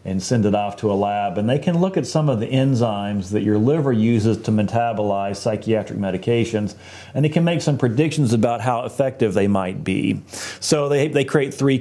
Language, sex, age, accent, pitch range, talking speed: English, male, 40-59, American, 105-135 Hz, 210 wpm